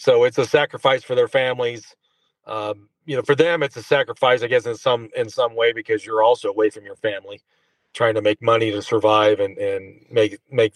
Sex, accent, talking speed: male, American, 220 wpm